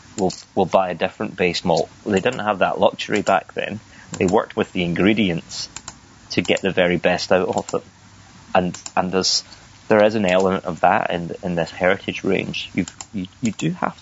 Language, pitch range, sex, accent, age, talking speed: English, 90-95 Hz, male, British, 30-49, 195 wpm